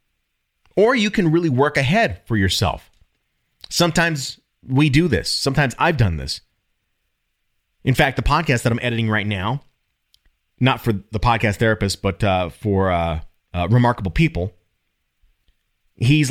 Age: 30-49